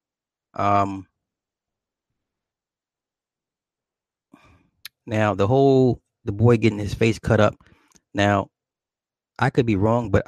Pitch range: 105-140 Hz